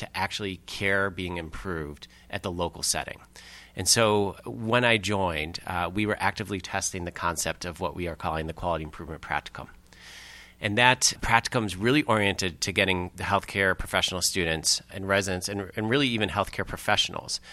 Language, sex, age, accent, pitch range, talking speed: English, male, 30-49, American, 85-105 Hz, 170 wpm